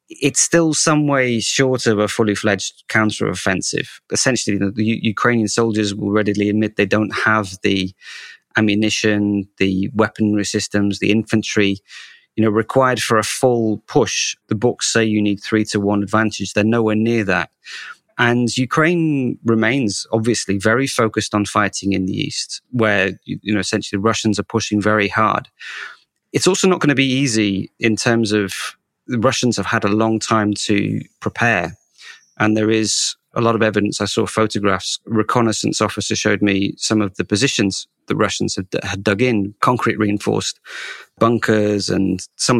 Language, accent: English, British